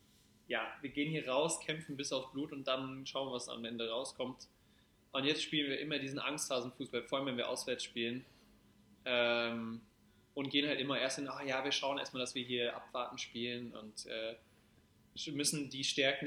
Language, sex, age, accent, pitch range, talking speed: German, male, 20-39, German, 115-135 Hz, 190 wpm